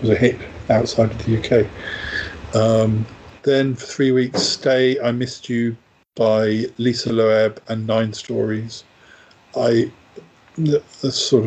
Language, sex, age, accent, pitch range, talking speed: English, male, 50-69, British, 110-130 Hz, 125 wpm